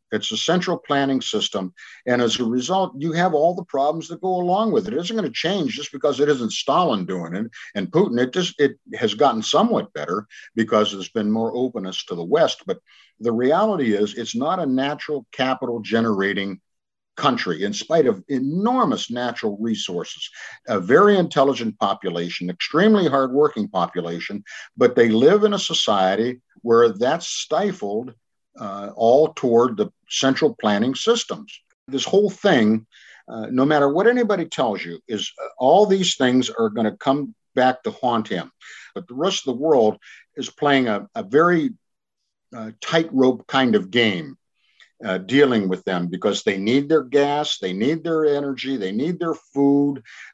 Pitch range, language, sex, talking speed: 115-165 Hz, English, male, 170 wpm